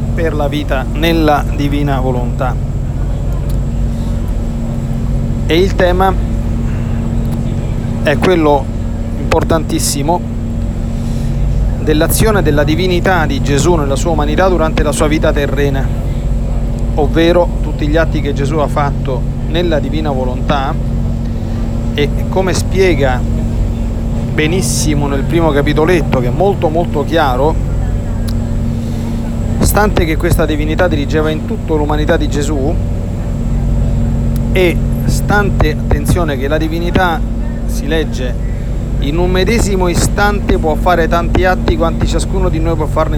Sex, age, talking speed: male, 40-59, 110 wpm